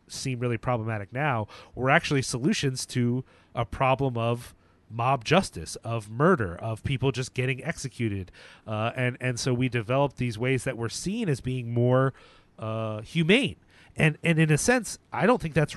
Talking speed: 170 wpm